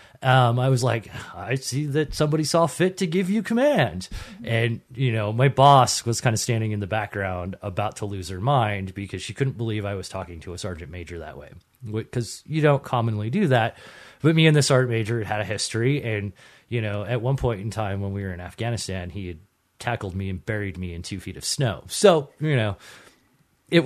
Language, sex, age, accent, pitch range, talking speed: English, male, 30-49, American, 95-130 Hz, 220 wpm